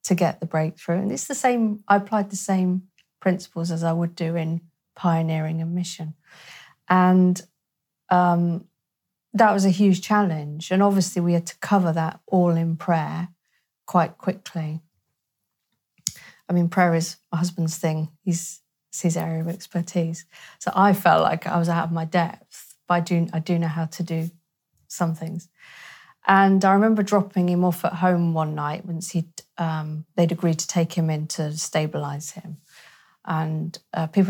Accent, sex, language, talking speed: British, female, English, 175 wpm